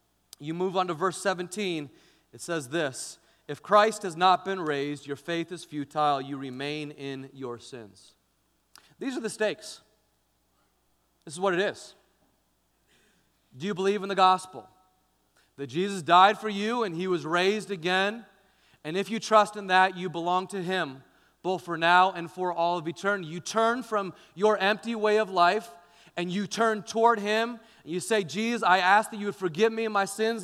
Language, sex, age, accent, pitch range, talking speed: English, male, 30-49, American, 160-210 Hz, 185 wpm